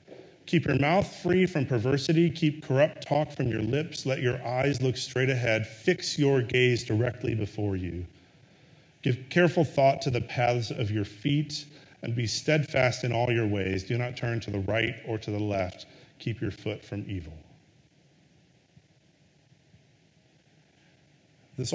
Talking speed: 155 wpm